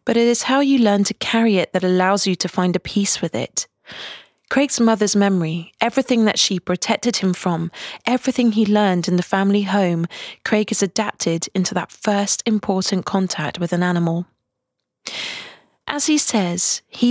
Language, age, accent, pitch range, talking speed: English, 30-49, British, 180-225 Hz, 170 wpm